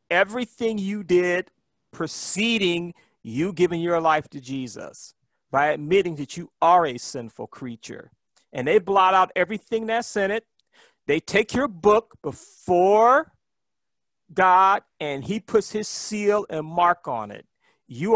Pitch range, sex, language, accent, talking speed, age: 145-200 Hz, male, English, American, 140 wpm, 40-59